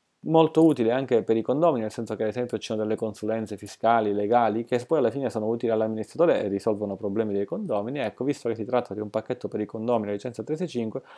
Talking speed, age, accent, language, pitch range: 225 wpm, 20-39, native, Italian, 105-125 Hz